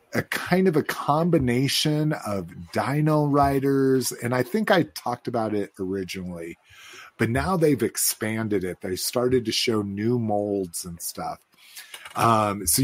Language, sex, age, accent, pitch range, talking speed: English, male, 30-49, American, 95-125 Hz, 145 wpm